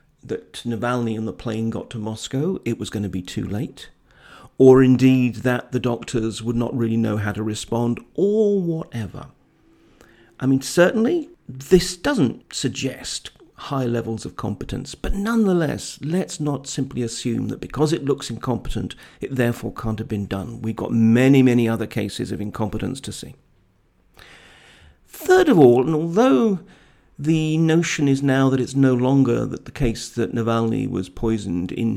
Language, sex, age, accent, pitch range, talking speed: English, male, 50-69, British, 110-140 Hz, 165 wpm